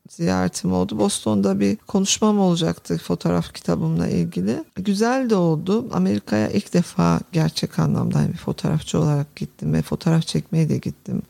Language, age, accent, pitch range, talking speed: Turkish, 50-69, native, 165-220 Hz, 145 wpm